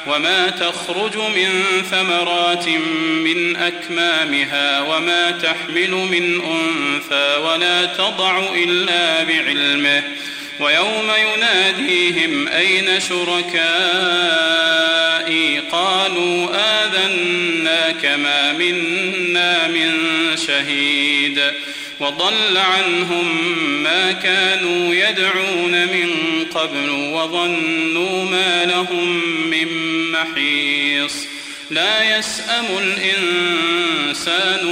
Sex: male